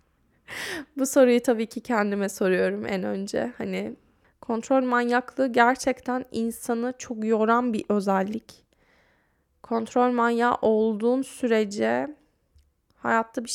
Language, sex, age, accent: Turkish, female, 10-29, native